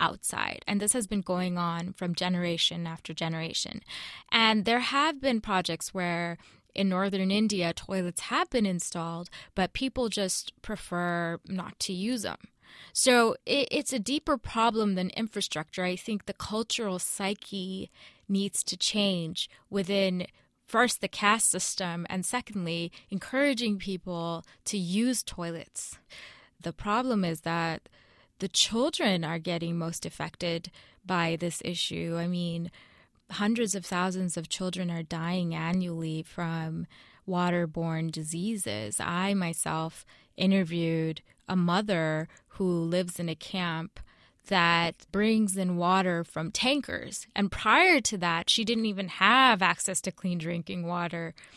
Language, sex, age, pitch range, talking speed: English, female, 20-39, 170-205 Hz, 135 wpm